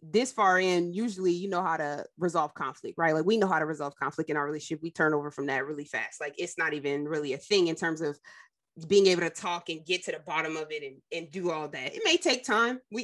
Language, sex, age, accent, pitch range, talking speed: English, female, 20-39, American, 165-245 Hz, 270 wpm